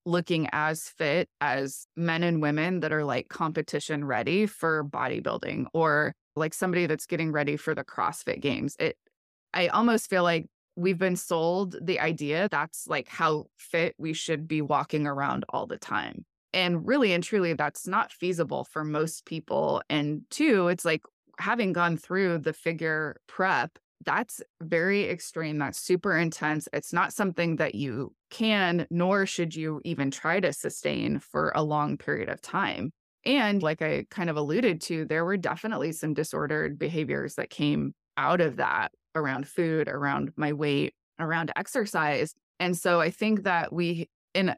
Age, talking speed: 20-39, 165 wpm